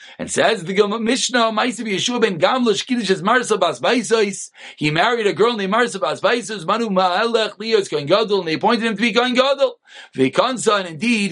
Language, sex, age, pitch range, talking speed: English, male, 40-59, 195-255 Hz, 170 wpm